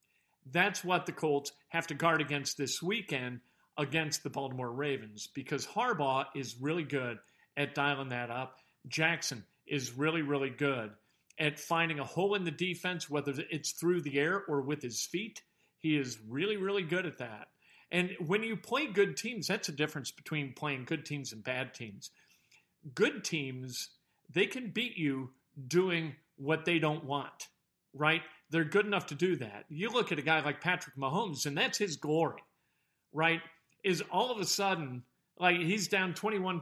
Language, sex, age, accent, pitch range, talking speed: English, male, 50-69, American, 145-180 Hz, 175 wpm